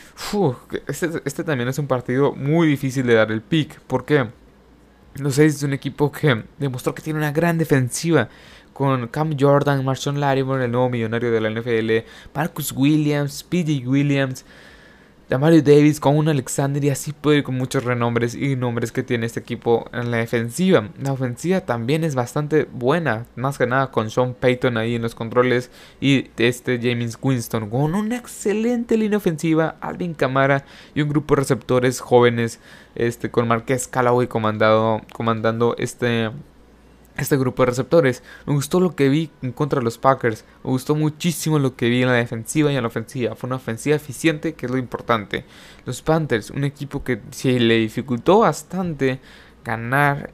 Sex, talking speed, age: male, 175 wpm, 20-39